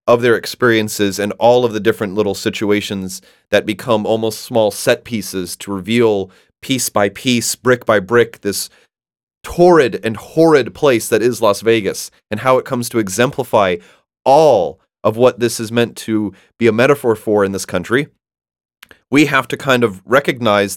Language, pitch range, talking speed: English, 105-125 Hz, 170 wpm